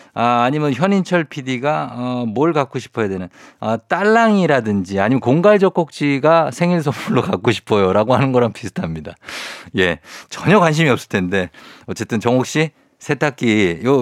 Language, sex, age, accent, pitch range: Korean, male, 50-69, native, 115-180 Hz